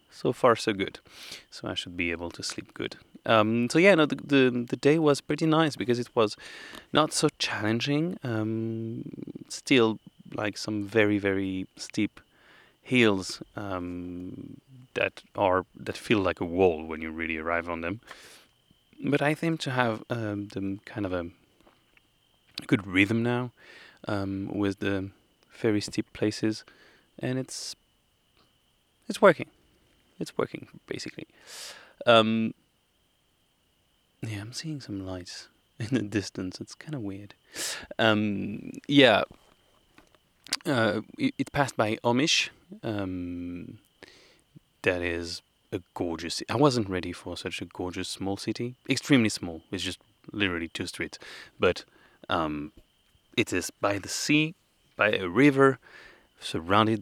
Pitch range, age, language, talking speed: 95-125 Hz, 30-49, English, 135 wpm